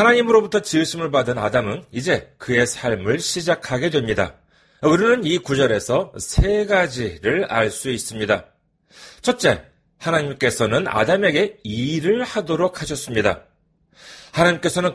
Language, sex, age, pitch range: Korean, male, 40-59, 125-200 Hz